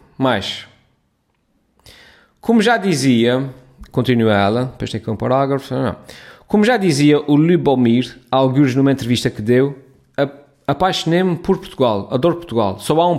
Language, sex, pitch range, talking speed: Portuguese, male, 115-145 Hz, 135 wpm